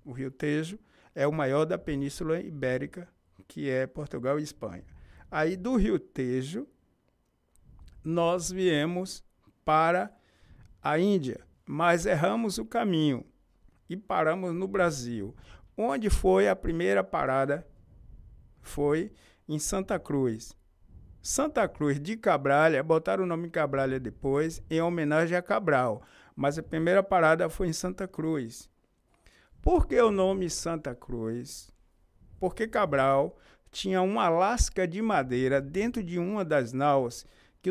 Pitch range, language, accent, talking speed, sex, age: 135-180 Hz, Portuguese, Brazilian, 125 wpm, male, 60-79